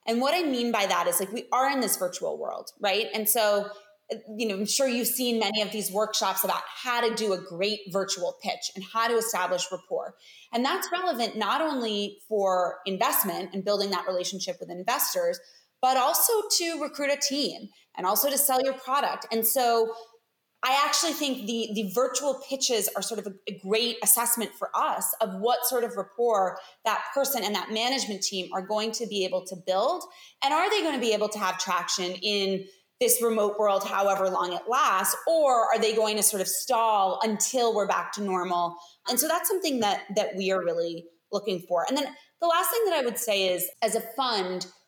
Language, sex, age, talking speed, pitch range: English, female, 20-39, 210 wpm, 190-255 Hz